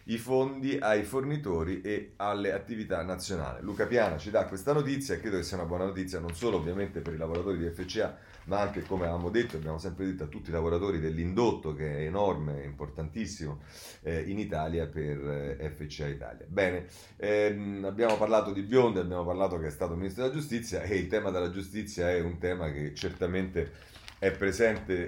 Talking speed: 185 wpm